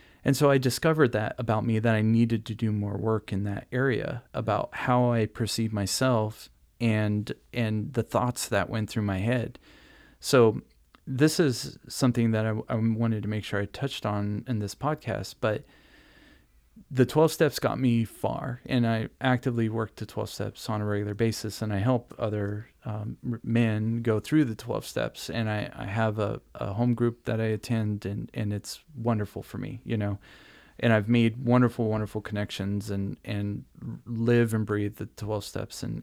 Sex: male